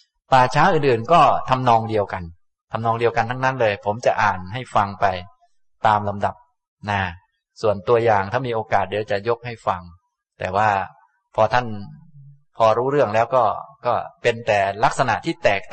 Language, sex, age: Thai, male, 20-39